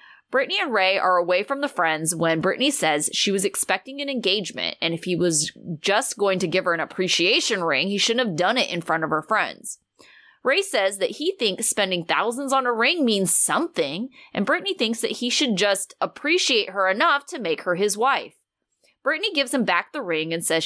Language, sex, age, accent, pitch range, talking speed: English, female, 20-39, American, 175-260 Hz, 210 wpm